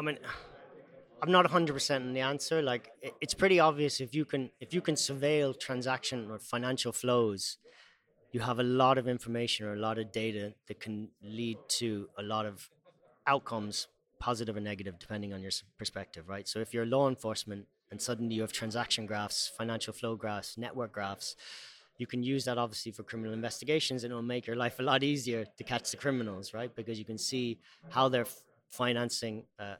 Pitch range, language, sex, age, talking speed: 110-130 Hz, English, male, 30-49, 190 wpm